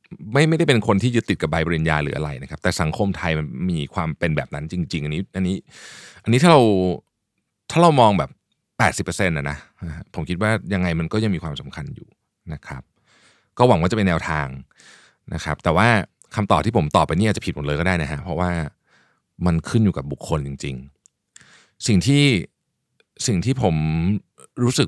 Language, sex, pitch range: Thai, male, 80-105 Hz